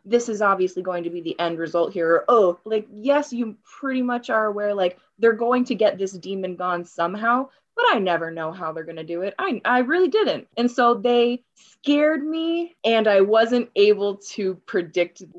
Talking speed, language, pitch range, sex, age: 205 wpm, English, 180-225 Hz, female, 20-39